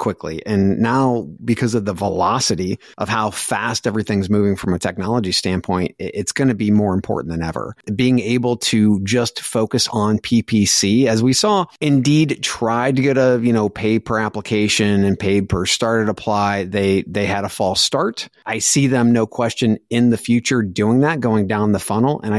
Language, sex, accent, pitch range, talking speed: English, male, American, 100-120 Hz, 190 wpm